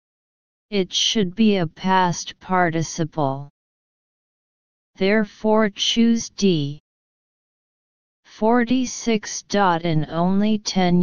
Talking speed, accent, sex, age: 70 wpm, American, female, 40-59